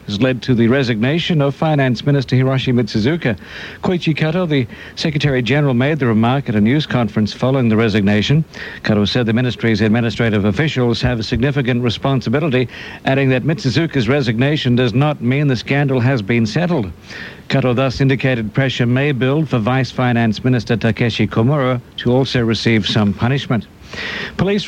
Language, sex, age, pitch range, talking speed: English, male, 60-79, 120-145 Hz, 160 wpm